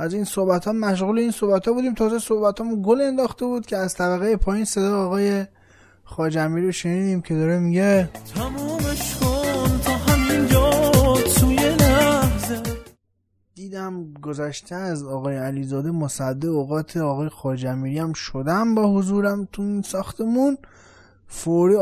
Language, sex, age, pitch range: Persian, male, 20-39, 135-190 Hz